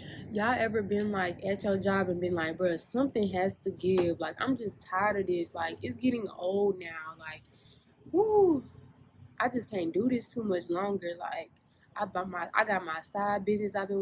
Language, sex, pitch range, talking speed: English, female, 170-205 Hz, 200 wpm